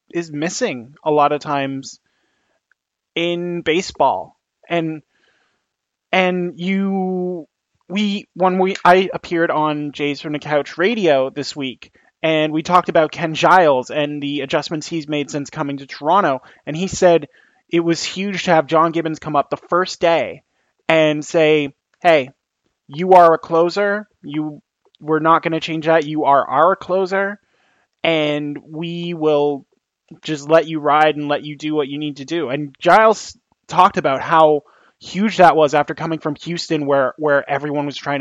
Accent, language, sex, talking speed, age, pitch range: American, English, male, 165 wpm, 20-39, 145-170 Hz